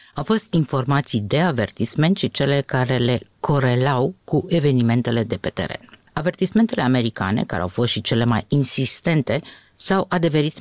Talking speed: 145 wpm